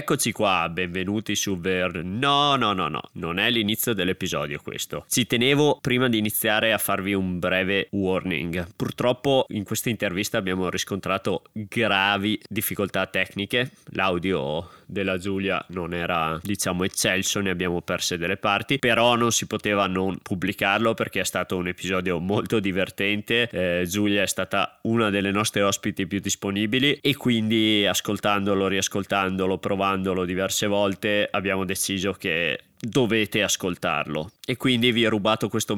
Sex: male